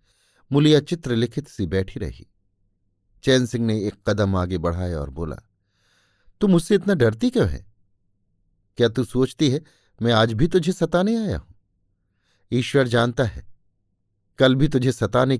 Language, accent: Hindi, native